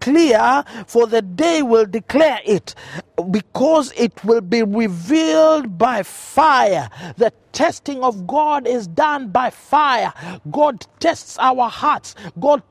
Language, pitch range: English, 210-265 Hz